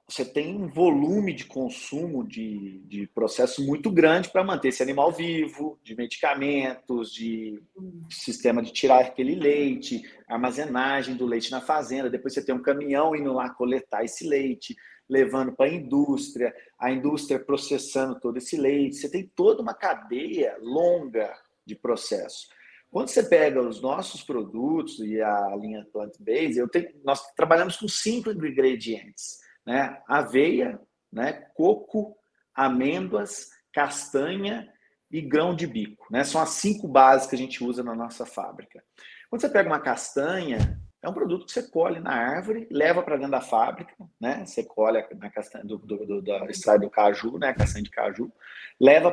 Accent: Brazilian